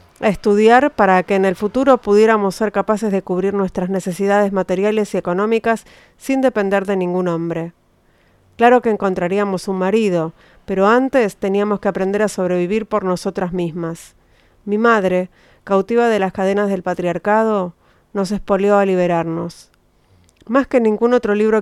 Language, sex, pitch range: Spanish, female, 185-220 Hz